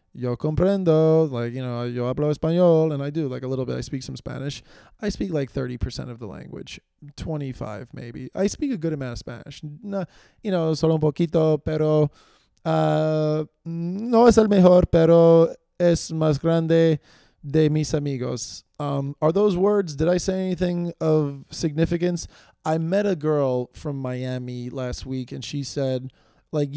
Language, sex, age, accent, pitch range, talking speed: English, male, 20-39, American, 130-155 Hz, 170 wpm